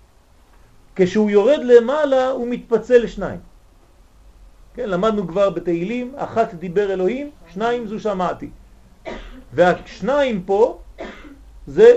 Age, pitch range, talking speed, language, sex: 40-59, 170-240 Hz, 95 wpm, French, male